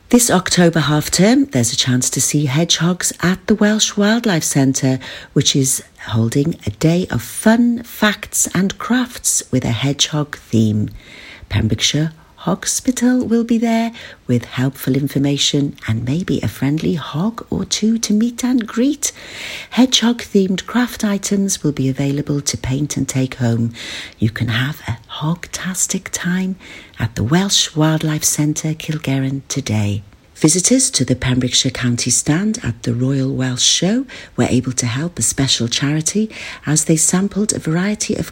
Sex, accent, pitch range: female, British, 130-185 Hz